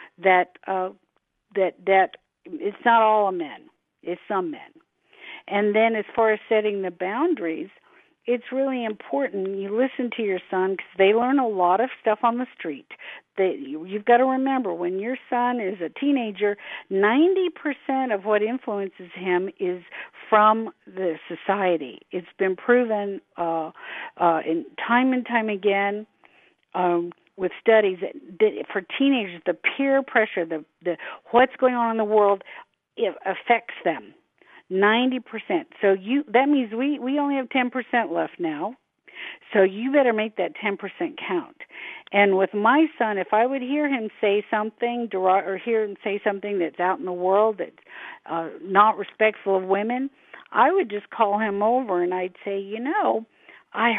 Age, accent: 50-69, American